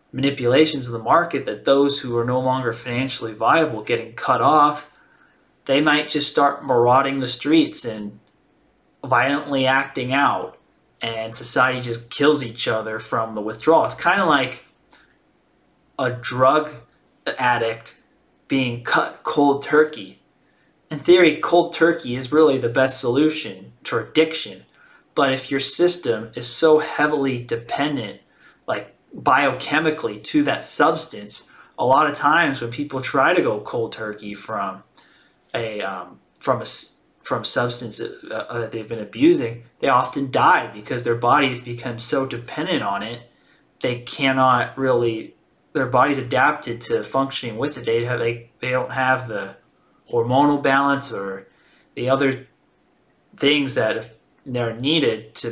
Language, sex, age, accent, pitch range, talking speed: English, male, 30-49, American, 120-145 Hz, 140 wpm